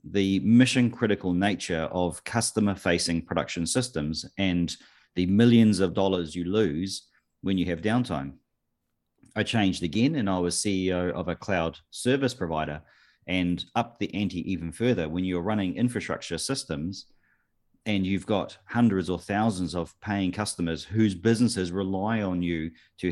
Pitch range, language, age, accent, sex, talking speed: 85-110 Hz, English, 40-59, Australian, male, 150 wpm